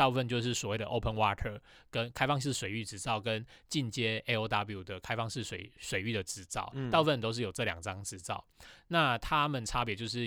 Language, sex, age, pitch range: Chinese, male, 20-39, 105-130 Hz